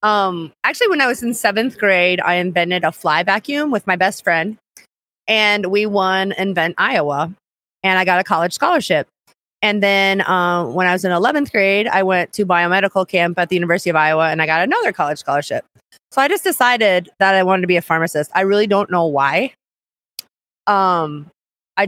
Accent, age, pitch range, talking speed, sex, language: American, 30-49, 180-215 Hz, 195 wpm, female, English